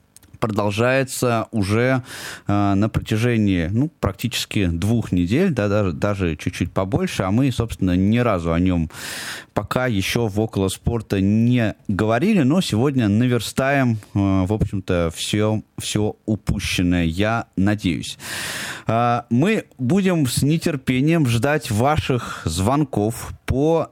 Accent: native